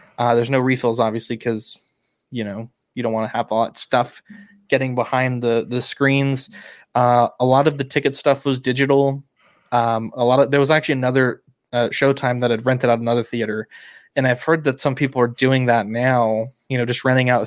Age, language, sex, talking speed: 20-39, English, male, 215 wpm